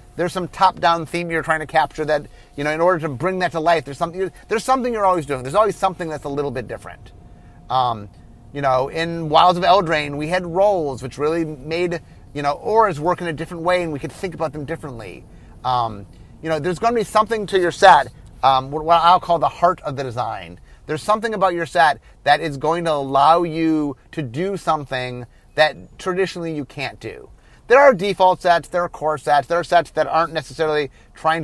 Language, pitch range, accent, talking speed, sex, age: English, 145-185 Hz, American, 220 wpm, male, 30-49